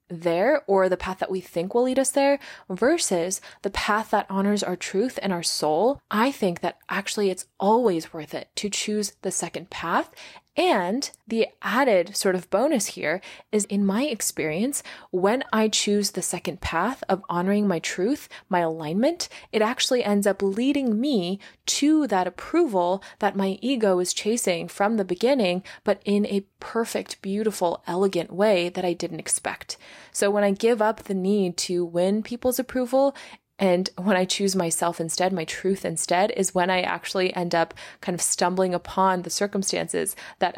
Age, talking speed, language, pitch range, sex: 20-39, 175 wpm, English, 180-215 Hz, female